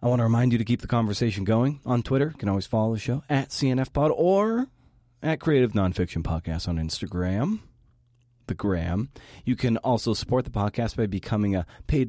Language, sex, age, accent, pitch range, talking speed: English, male, 30-49, American, 95-125 Hz, 195 wpm